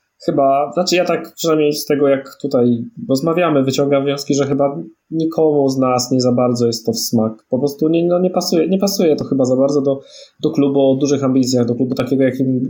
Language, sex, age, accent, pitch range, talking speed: Polish, male, 20-39, native, 125-150 Hz, 205 wpm